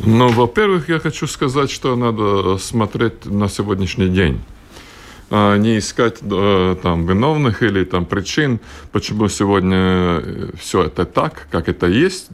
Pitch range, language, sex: 100-140 Hz, Russian, male